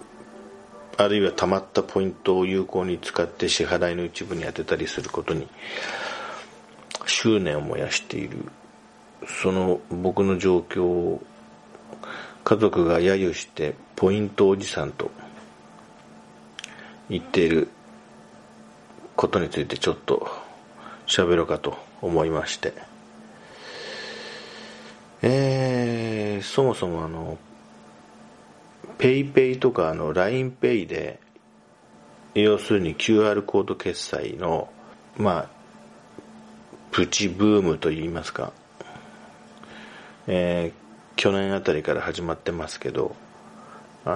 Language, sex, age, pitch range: Japanese, male, 40-59, 75-100 Hz